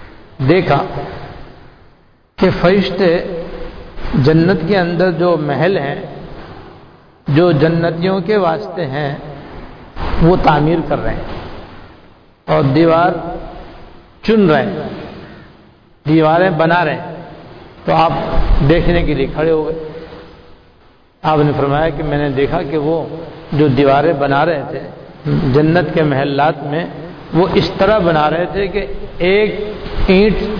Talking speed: 125 wpm